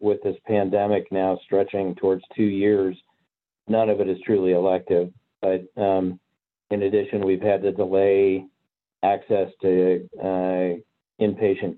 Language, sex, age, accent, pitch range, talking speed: English, male, 50-69, American, 90-100 Hz, 130 wpm